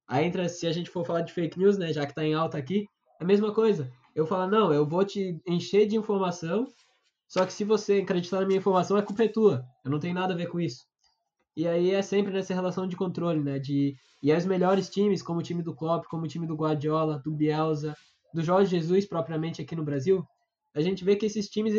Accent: Brazilian